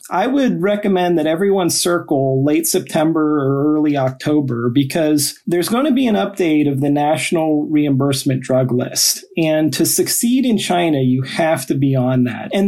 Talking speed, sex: 170 wpm, male